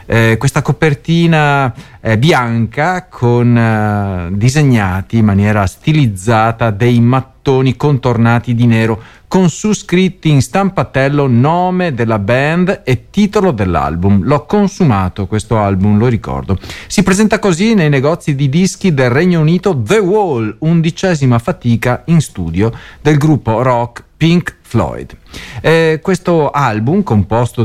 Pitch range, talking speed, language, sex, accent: 115-175 Hz, 125 wpm, Italian, male, native